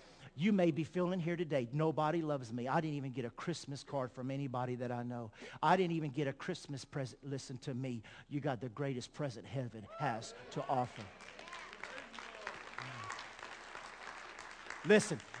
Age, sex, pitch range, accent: 50-69, male, 120-160 Hz, American